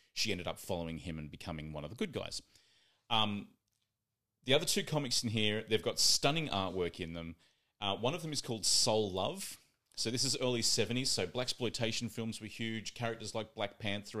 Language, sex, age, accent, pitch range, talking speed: English, male, 30-49, Australian, 90-115 Hz, 205 wpm